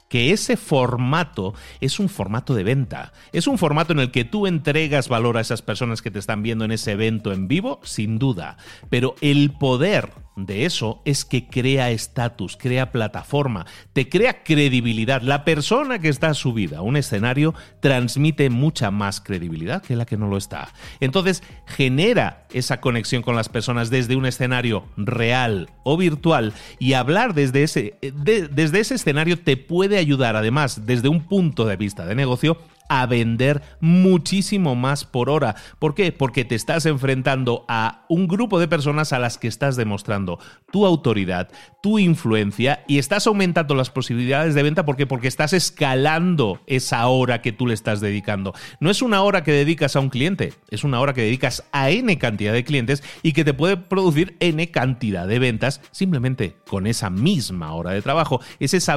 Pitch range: 115-160 Hz